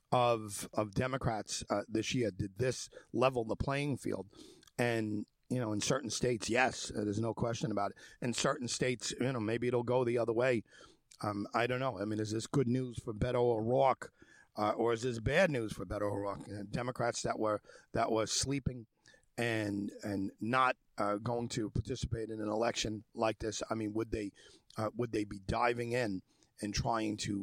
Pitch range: 105-135 Hz